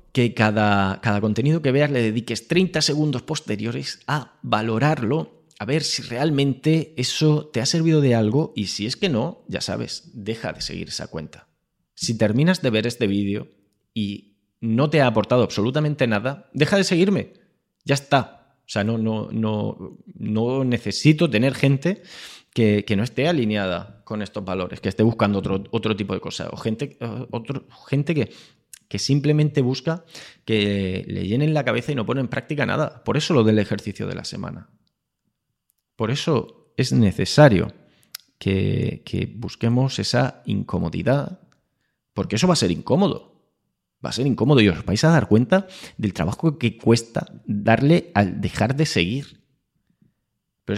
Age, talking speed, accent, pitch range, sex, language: 20-39, 165 wpm, Spanish, 105-150 Hz, male, Spanish